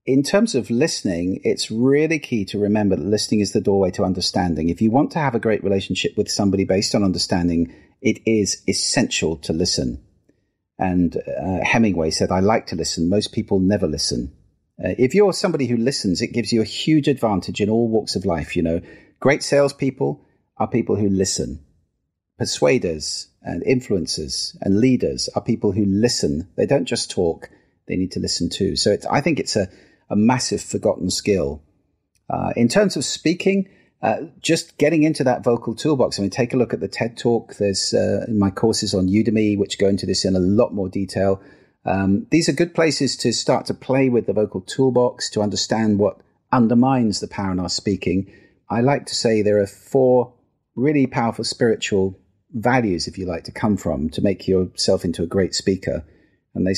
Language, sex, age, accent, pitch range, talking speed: English, male, 40-59, British, 95-125 Hz, 195 wpm